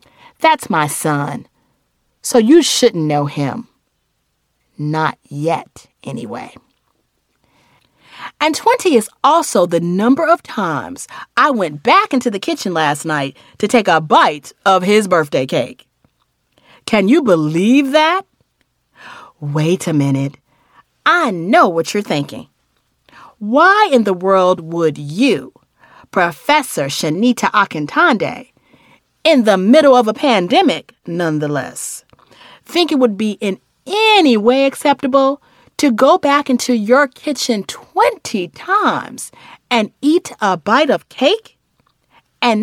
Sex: female